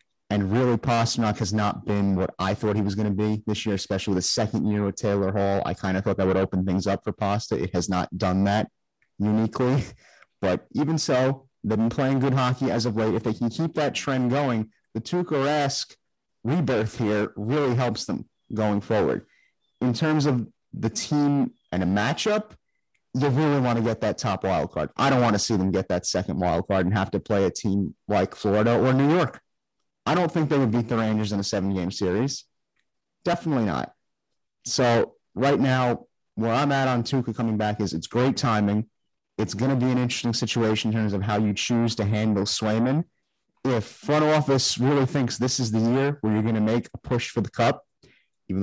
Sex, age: male, 30-49